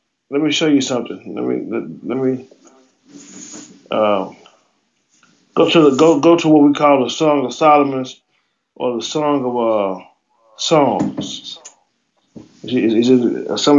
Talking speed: 150 wpm